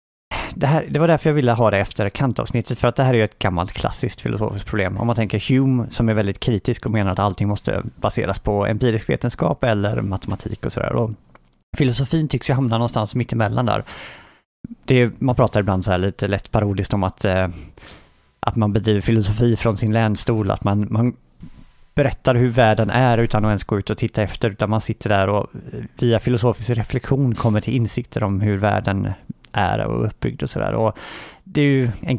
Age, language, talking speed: 30-49, Swedish, 200 wpm